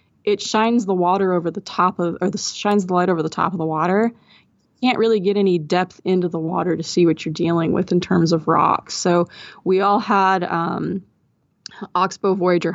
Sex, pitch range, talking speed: female, 170-195 Hz, 210 wpm